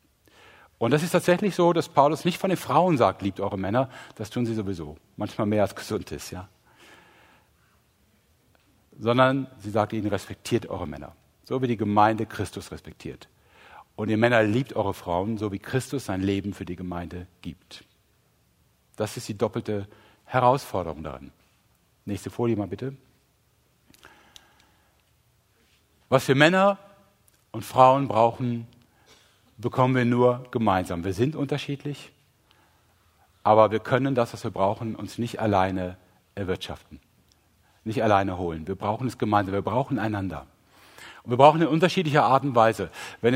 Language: German